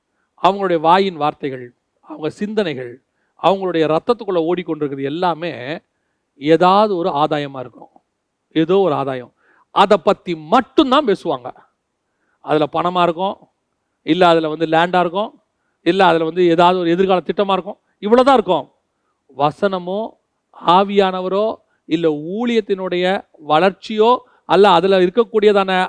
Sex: male